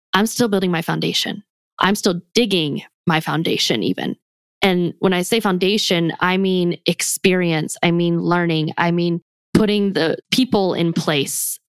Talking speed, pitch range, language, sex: 150 wpm, 170-205 Hz, English, female